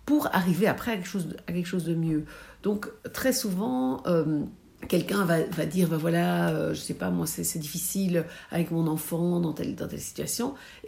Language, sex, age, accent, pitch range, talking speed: French, female, 60-79, French, 165-220 Hz, 215 wpm